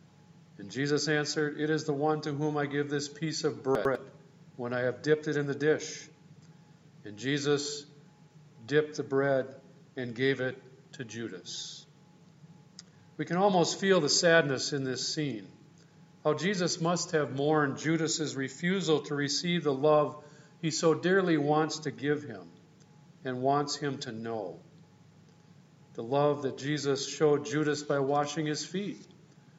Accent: American